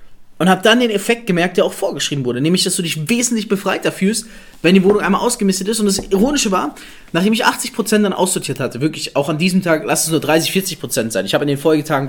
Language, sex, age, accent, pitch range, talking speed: German, male, 20-39, German, 155-215 Hz, 245 wpm